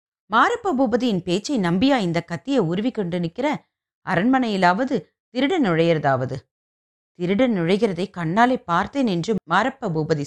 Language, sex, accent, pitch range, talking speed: Tamil, female, native, 175-255 Hz, 110 wpm